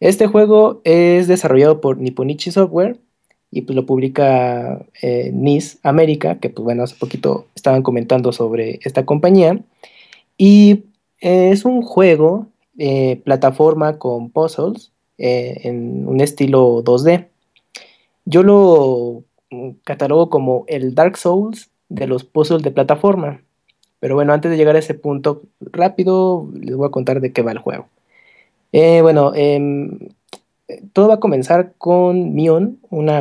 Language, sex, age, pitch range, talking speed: Spanish, male, 20-39, 130-175 Hz, 140 wpm